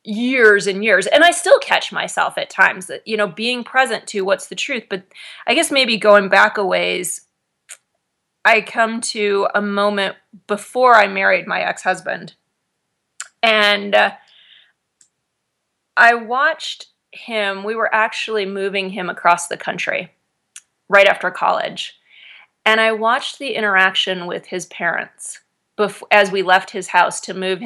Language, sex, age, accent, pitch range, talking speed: English, female, 30-49, American, 185-220 Hz, 150 wpm